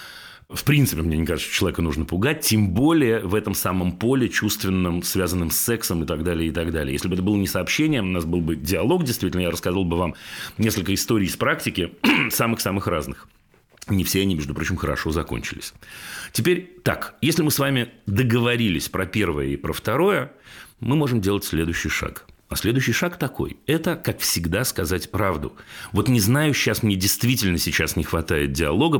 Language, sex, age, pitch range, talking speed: Russian, male, 40-59, 90-120 Hz, 185 wpm